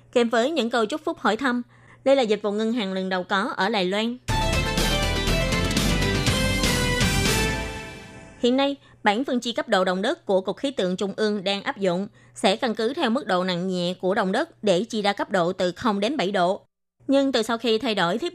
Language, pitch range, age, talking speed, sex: Vietnamese, 185-240 Hz, 20-39, 215 wpm, female